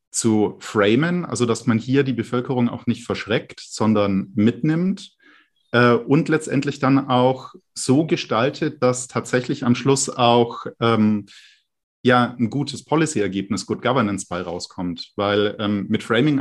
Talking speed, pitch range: 135 wpm, 110-130 Hz